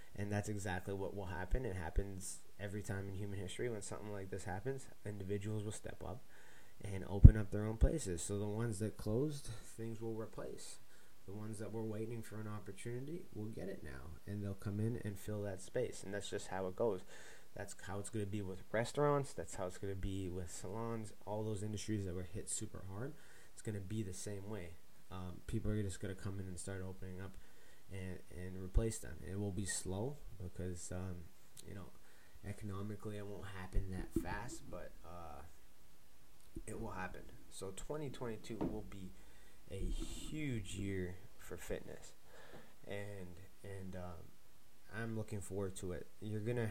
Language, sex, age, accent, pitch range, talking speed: English, male, 30-49, American, 95-110 Hz, 190 wpm